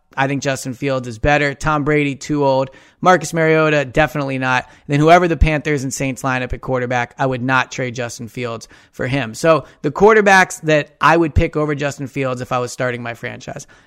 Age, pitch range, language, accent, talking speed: 30-49, 130-160 Hz, English, American, 205 wpm